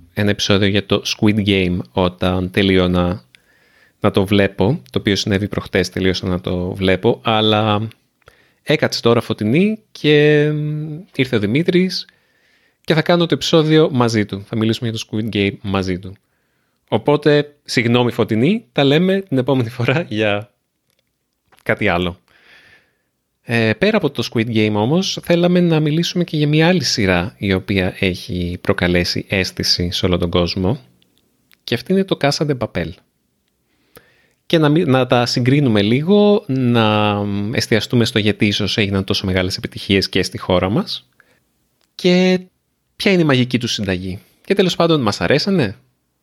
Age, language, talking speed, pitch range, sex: 30-49, Greek, 150 wpm, 95-150 Hz, male